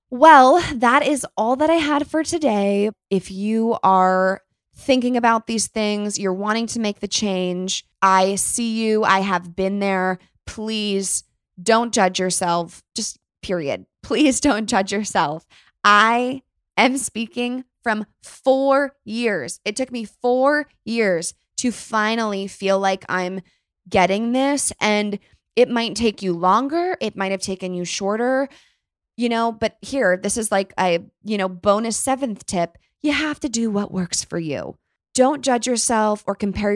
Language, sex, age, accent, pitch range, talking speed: English, female, 20-39, American, 185-230 Hz, 155 wpm